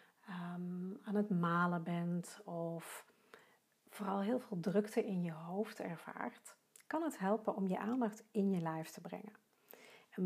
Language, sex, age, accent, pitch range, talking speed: Dutch, female, 40-59, Dutch, 175-220 Hz, 145 wpm